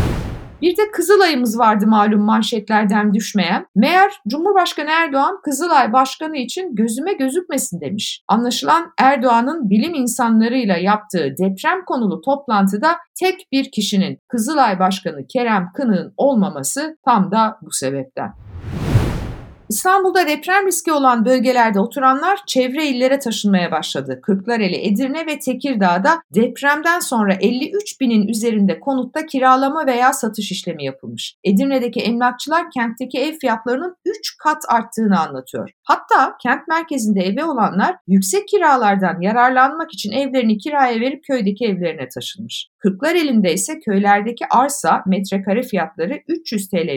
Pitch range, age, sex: 195-285 Hz, 60-79, female